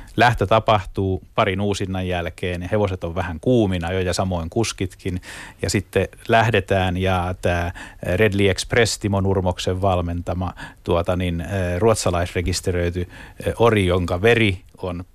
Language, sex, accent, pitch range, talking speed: Finnish, male, native, 90-100 Hz, 120 wpm